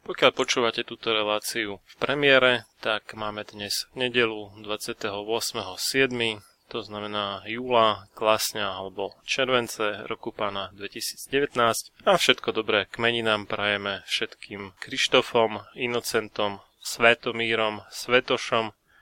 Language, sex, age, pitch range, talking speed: Slovak, male, 20-39, 105-115 Hz, 95 wpm